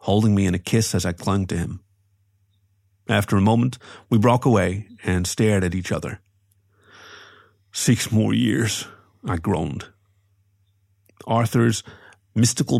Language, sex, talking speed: English, male, 130 wpm